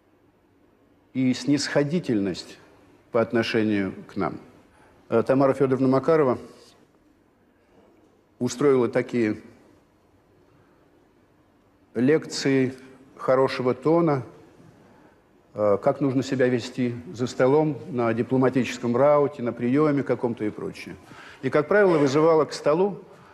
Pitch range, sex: 125-165 Hz, male